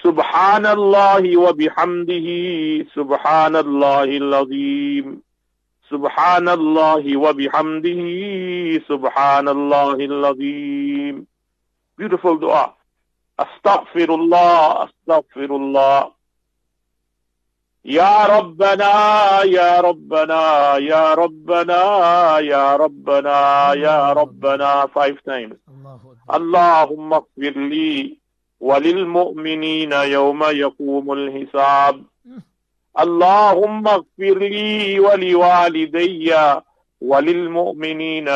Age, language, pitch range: 50-69, English, 140-175 Hz